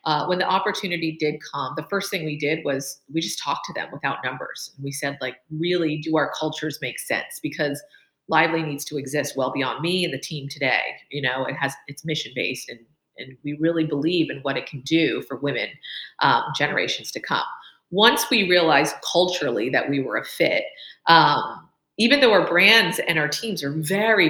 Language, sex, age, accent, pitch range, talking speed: English, female, 40-59, American, 150-195 Hz, 200 wpm